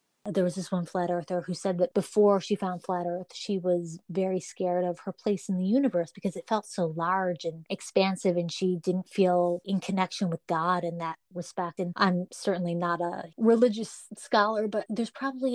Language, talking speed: English, 200 wpm